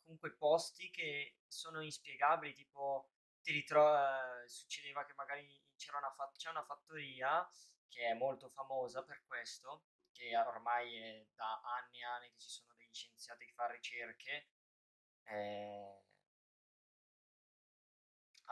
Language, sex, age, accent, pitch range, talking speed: Italian, male, 20-39, native, 125-160 Hz, 115 wpm